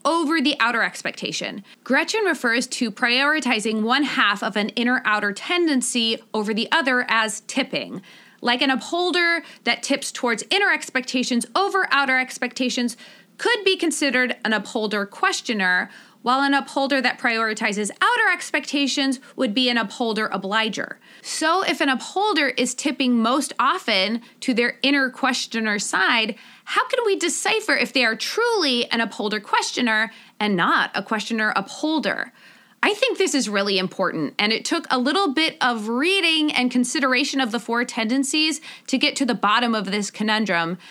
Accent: American